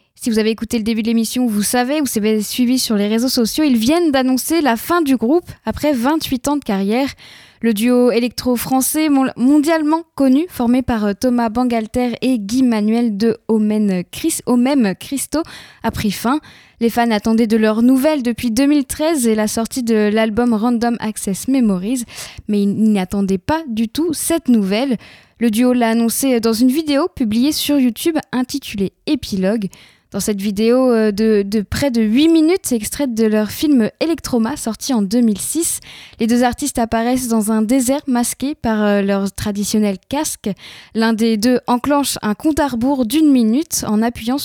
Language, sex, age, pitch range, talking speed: French, female, 10-29, 220-275 Hz, 170 wpm